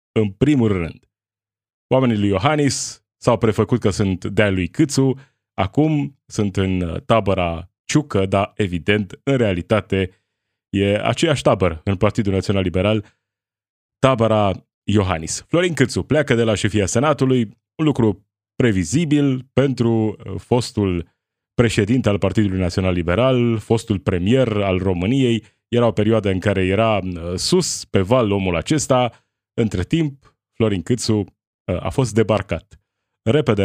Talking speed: 130 wpm